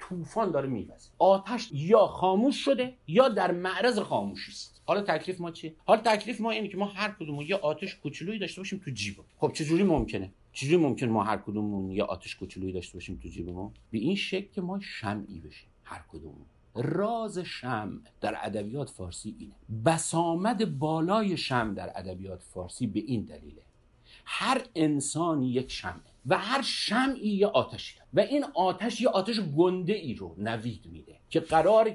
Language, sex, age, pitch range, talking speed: English, male, 50-69, 120-205 Hz, 175 wpm